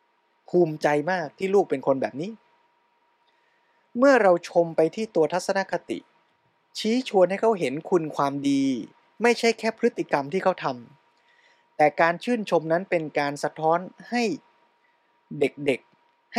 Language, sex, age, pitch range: Thai, male, 20-39, 135-195 Hz